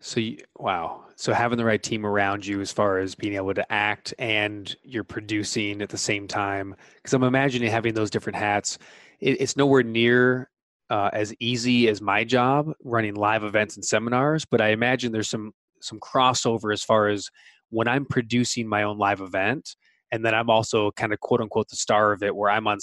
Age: 20-39